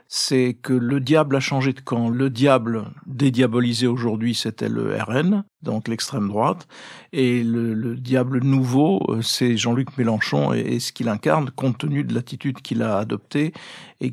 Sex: male